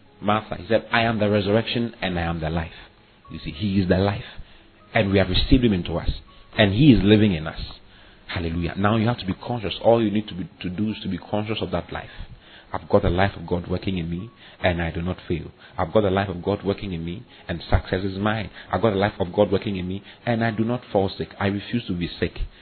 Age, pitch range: 40-59, 85-105 Hz